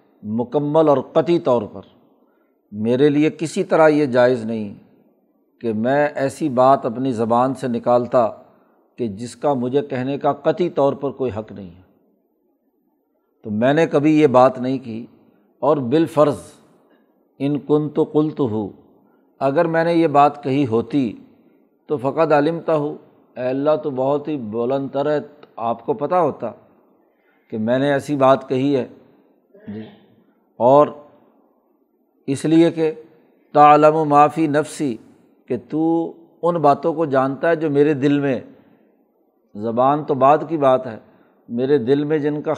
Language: Urdu